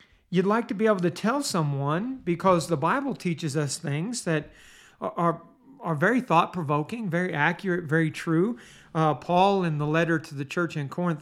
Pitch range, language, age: 155-190 Hz, English, 50-69